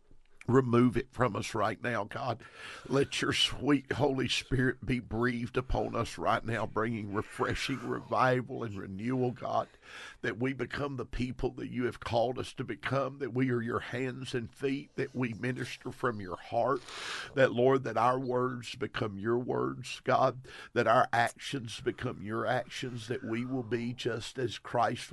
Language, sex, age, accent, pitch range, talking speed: English, male, 50-69, American, 115-130 Hz, 170 wpm